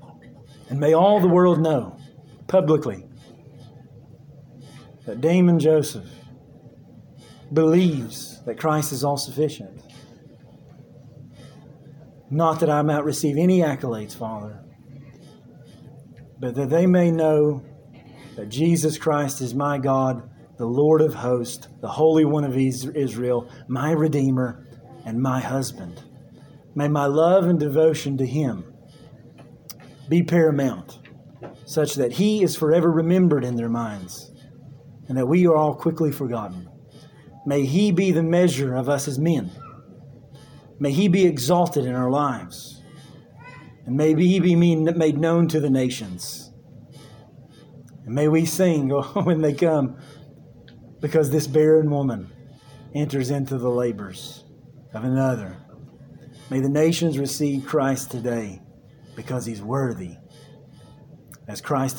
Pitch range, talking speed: 130-155 Hz, 120 wpm